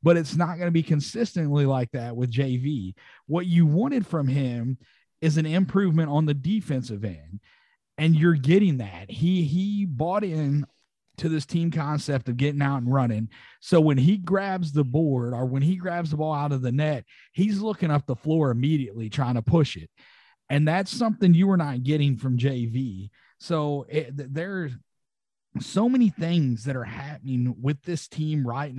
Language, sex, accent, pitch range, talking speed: English, male, American, 130-175 Hz, 185 wpm